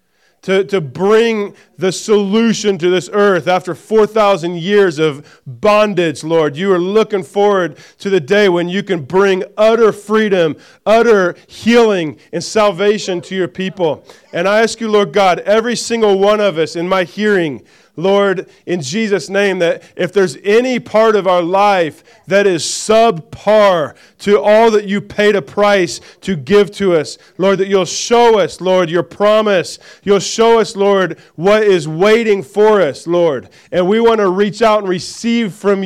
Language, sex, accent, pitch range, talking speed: English, male, American, 180-215 Hz, 170 wpm